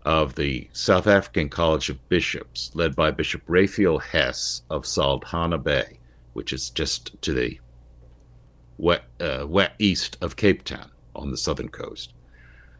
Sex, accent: male, American